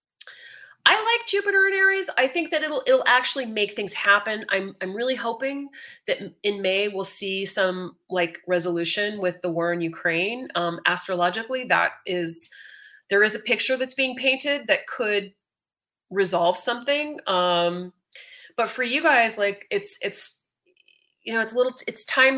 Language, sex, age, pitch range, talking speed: English, female, 30-49, 175-240 Hz, 165 wpm